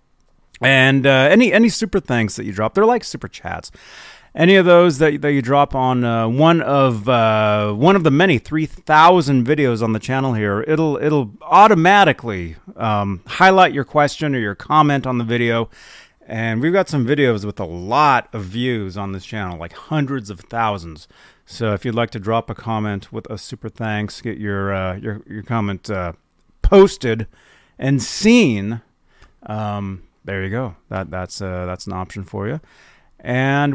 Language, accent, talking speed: English, American, 180 wpm